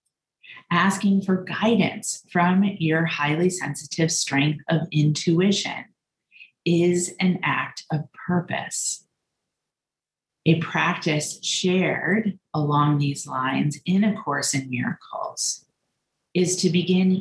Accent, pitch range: American, 140-180 Hz